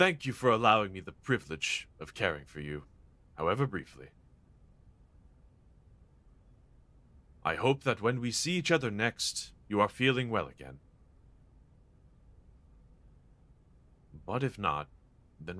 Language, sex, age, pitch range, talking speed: English, male, 30-49, 80-120 Hz, 120 wpm